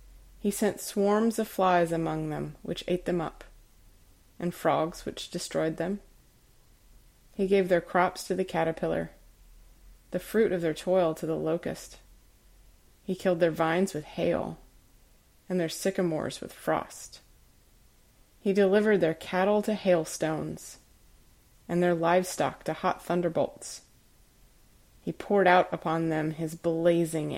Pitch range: 165-195 Hz